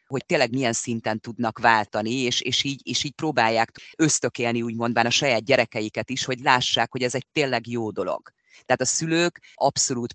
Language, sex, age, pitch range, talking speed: Hungarian, female, 30-49, 105-125 Hz, 165 wpm